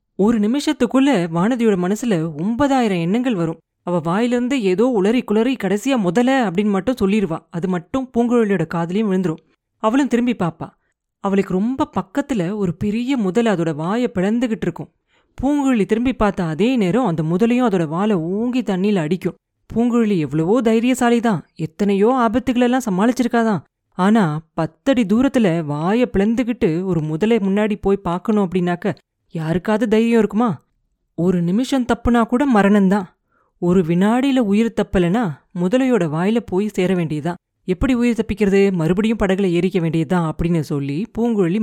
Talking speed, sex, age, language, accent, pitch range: 135 wpm, female, 30-49, Tamil, native, 180-235 Hz